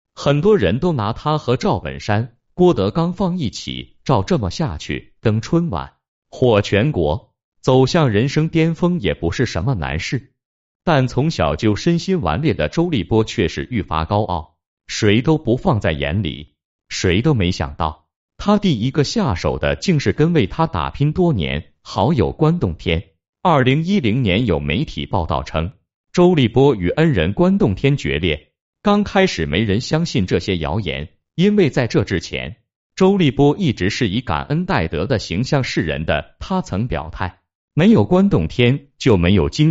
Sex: male